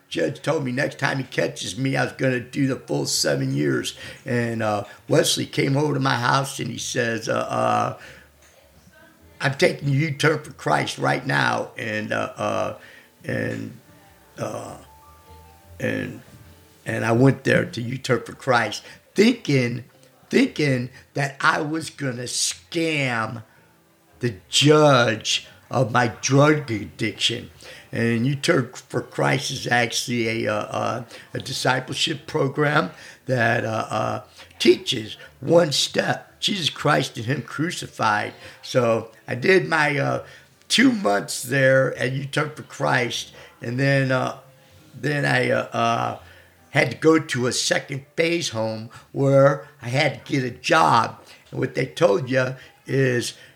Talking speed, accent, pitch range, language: 140 wpm, American, 115-145 Hz, English